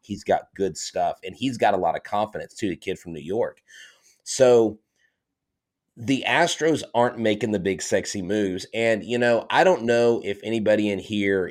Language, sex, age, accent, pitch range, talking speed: English, male, 30-49, American, 100-115 Hz, 190 wpm